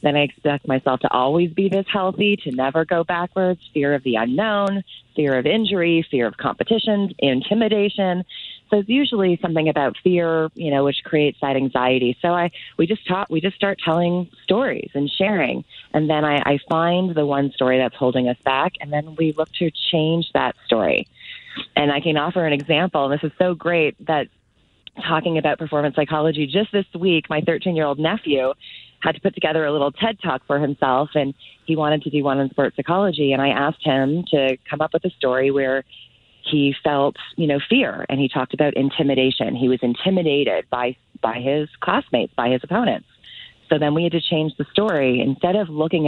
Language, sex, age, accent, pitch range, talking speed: English, female, 30-49, American, 140-175 Hz, 195 wpm